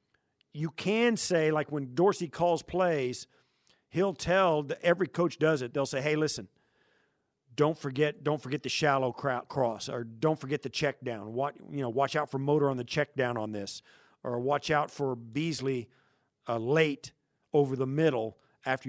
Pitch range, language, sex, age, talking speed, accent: 125-150 Hz, English, male, 50-69, 180 wpm, American